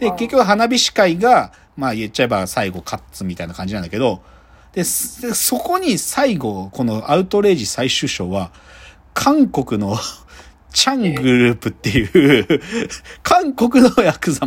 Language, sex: Japanese, male